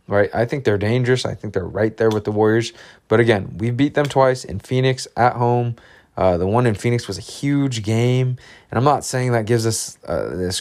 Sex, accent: male, American